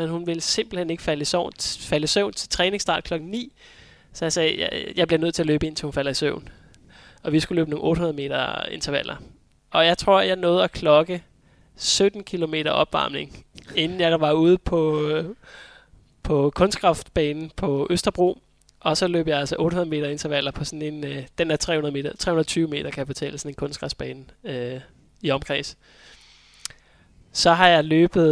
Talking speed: 185 wpm